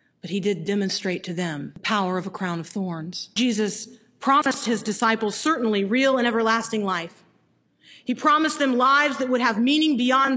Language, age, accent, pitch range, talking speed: English, 40-59, American, 200-265 Hz, 180 wpm